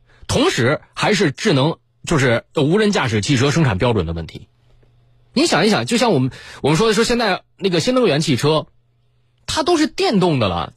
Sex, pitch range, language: male, 115-190 Hz, Chinese